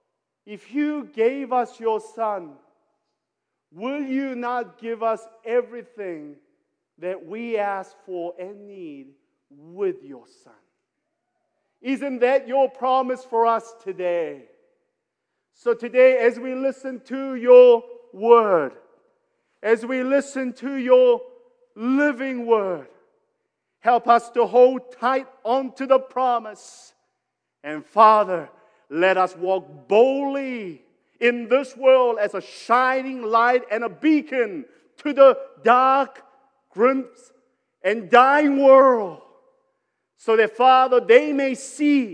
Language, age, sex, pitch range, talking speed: English, 50-69, male, 225-275 Hz, 115 wpm